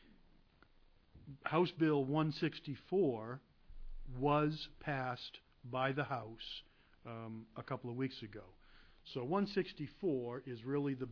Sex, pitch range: male, 120-140 Hz